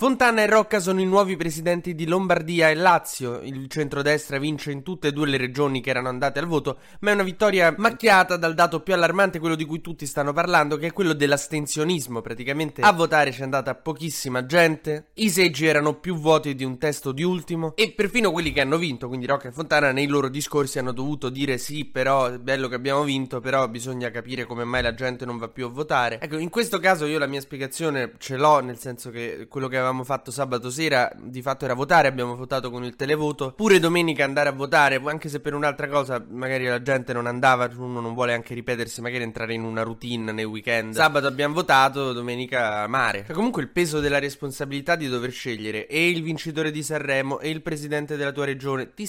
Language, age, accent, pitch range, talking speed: Italian, 20-39, native, 130-160 Hz, 215 wpm